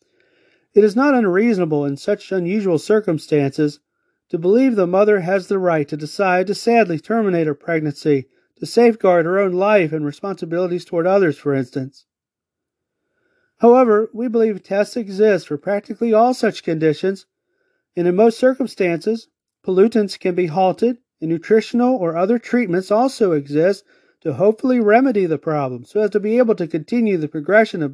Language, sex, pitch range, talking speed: English, male, 155-220 Hz, 155 wpm